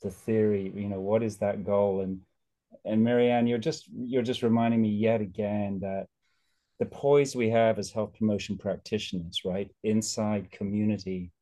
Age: 30-49